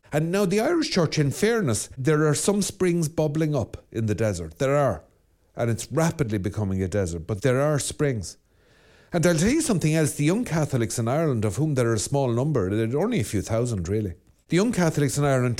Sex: male